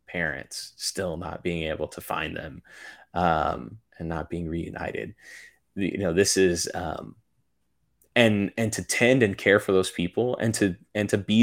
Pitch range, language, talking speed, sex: 85-100 Hz, English, 170 wpm, male